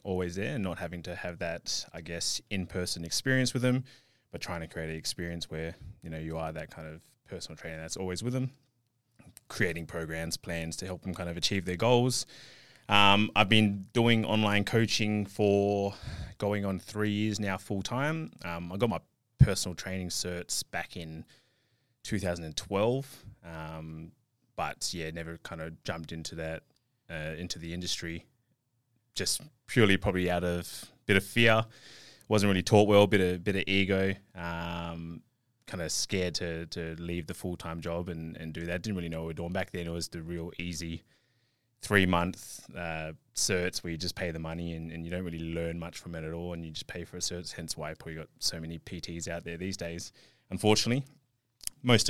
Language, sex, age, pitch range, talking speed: English, male, 20-39, 85-110 Hz, 195 wpm